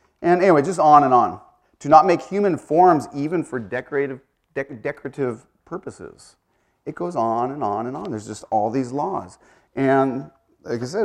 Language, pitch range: English, 115-150 Hz